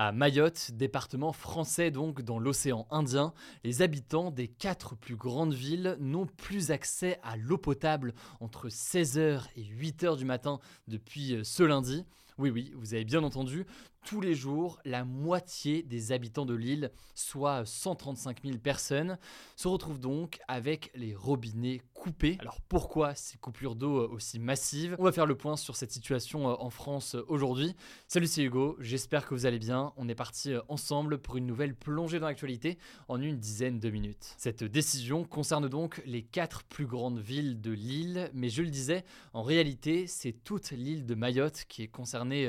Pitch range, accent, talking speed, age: 125-155 Hz, French, 170 wpm, 20-39